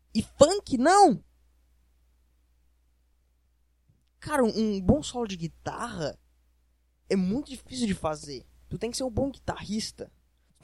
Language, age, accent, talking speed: Portuguese, 10-29, Brazilian, 125 wpm